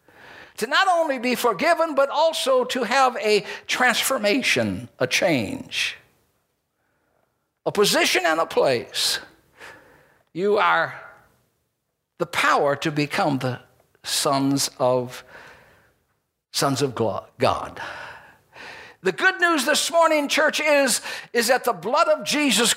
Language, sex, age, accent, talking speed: English, male, 60-79, American, 115 wpm